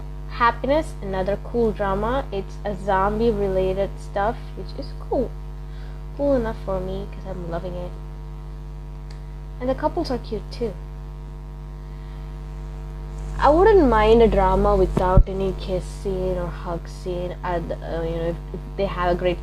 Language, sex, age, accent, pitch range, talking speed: English, female, 20-39, Indian, 155-200 Hz, 140 wpm